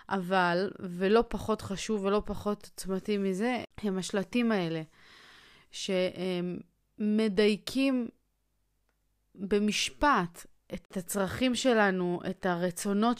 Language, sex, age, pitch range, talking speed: Hebrew, female, 20-39, 185-215 Hz, 80 wpm